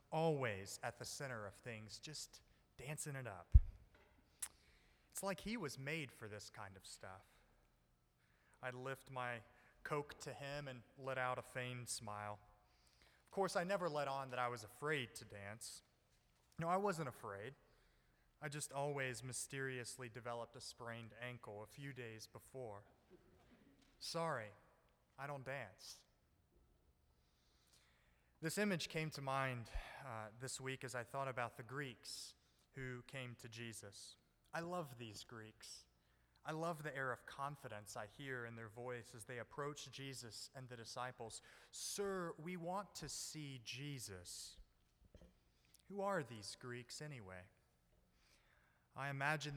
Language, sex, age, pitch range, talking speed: English, male, 30-49, 100-140 Hz, 140 wpm